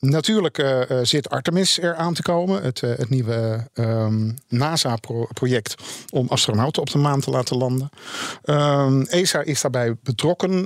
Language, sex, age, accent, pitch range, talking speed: Dutch, male, 50-69, Dutch, 115-145 Hz, 145 wpm